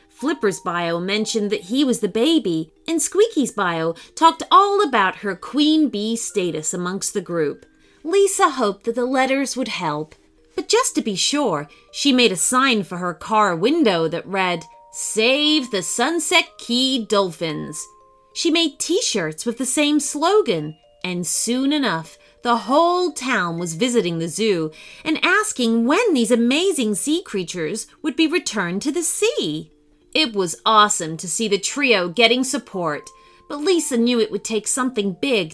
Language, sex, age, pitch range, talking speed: English, female, 30-49, 175-290 Hz, 160 wpm